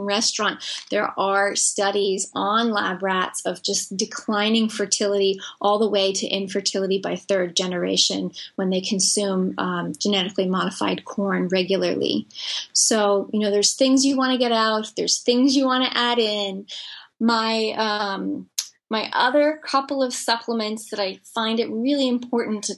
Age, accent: 20-39, American